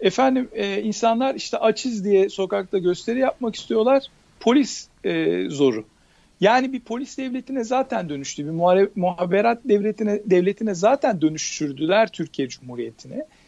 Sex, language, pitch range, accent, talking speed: male, Turkish, 185-245 Hz, native, 120 wpm